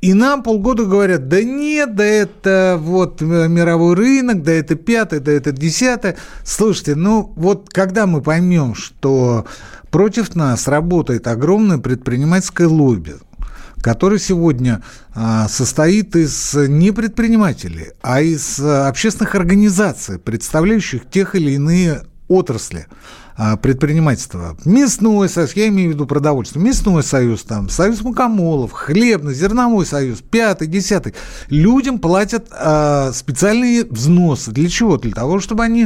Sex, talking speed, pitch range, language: male, 120 wpm, 140-205 Hz, Russian